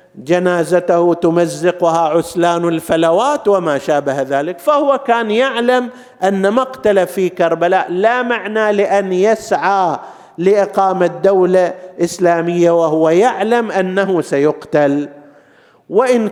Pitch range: 150-195 Hz